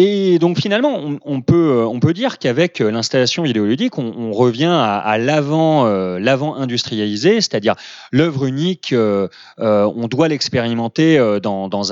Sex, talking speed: male, 145 wpm